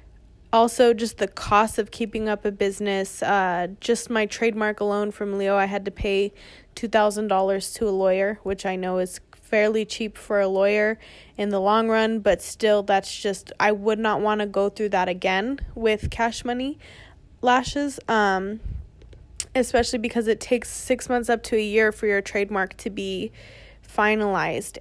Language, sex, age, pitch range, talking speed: English, female, 20-39, 195-220 Hz, 175 wpm